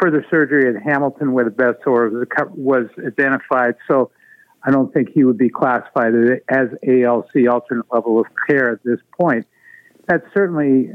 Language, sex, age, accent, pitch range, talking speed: English, male, 50-69, American, 115-145 Hz, 160 wpm